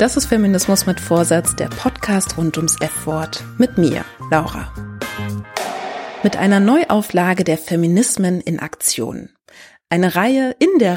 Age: 30-49